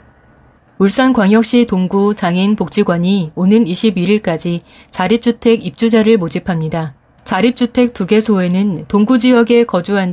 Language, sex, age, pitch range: Korean, female, 30-49, 180-230 Hz